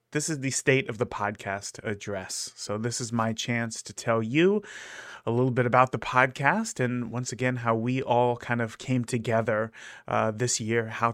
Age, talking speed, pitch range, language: 30-49, 195 wpm, 115-135 Hz, English